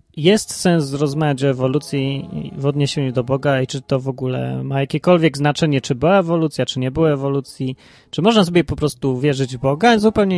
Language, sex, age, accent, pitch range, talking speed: Polish, male, 20-39, native, 130-155 Hz, 190 wpm